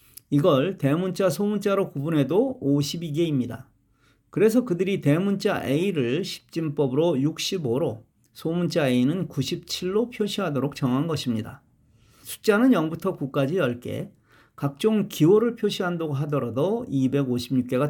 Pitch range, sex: 130-185 Hz, male